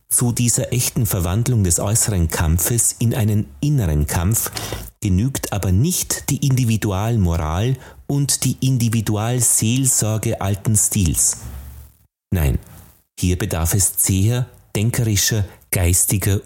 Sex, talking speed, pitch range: male, 100 wpm, 90-120 Hz